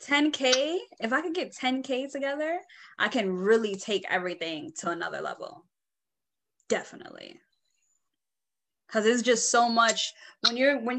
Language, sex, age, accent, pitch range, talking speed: English, female, 10-29, American, 195-260 Hz, 130 wpm